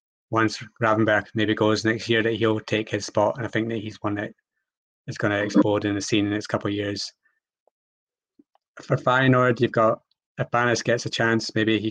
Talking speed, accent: 205 wpm, British